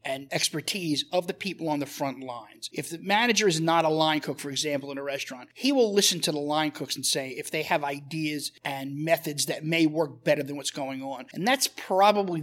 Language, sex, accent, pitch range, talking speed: English, male, American, 145-190 Hz, 230 wpm